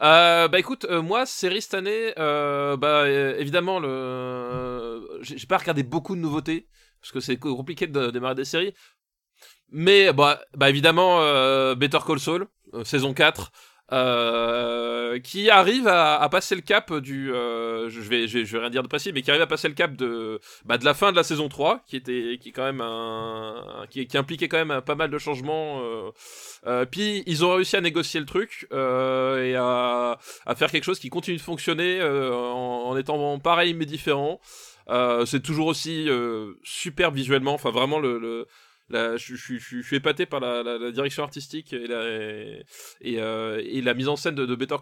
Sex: male